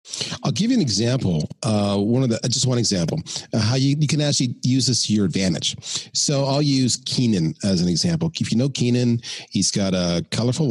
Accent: American